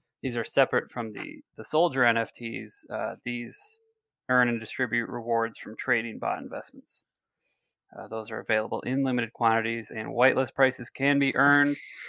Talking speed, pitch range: 155 wpm, 120-140 Hz